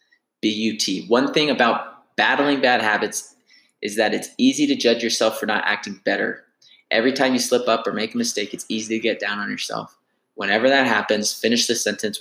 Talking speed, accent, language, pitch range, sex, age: 195 wpm, American, English, 110-125 Hz, male, 20-39